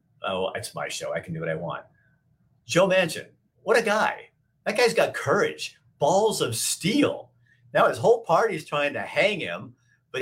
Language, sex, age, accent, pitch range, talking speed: English, male, 50-69, American, 115-165 Hz, 180 wpm